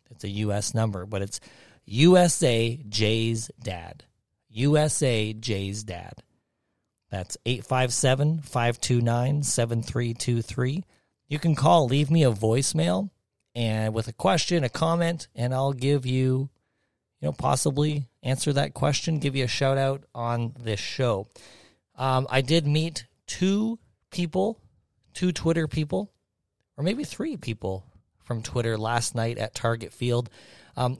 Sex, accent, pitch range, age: male, American, 110-140 Hz, 30-49